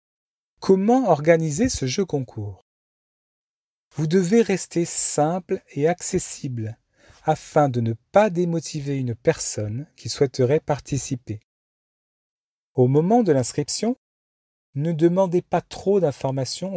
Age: 40-59